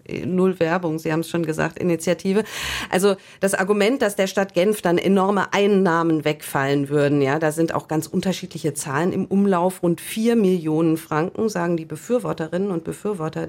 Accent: German